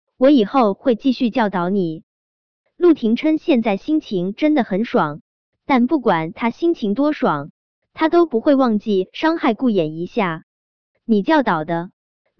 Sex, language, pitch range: male, Chinese, 195-295 Hz